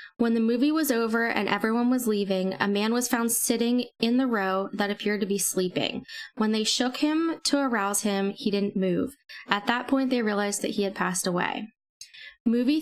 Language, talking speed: English, 200 wpm